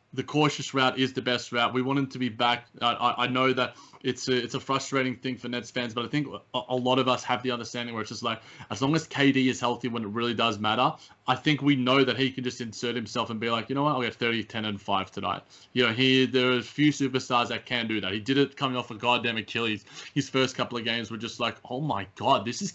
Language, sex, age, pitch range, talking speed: English, male, 20-39, 120-140 Hz, 275 wpm